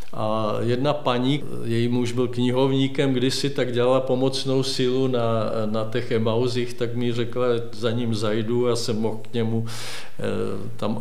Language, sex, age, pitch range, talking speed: Czech, male, 50-69, 115-125 Hz, 160 wpm